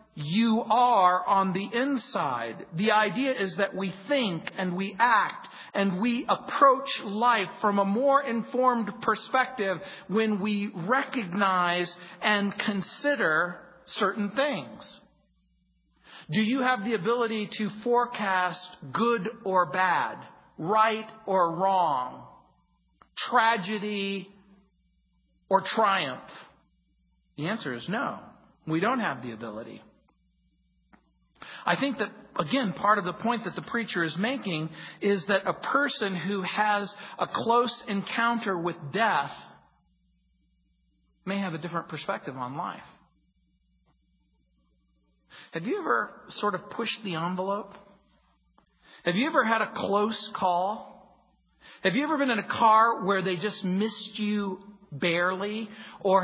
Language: English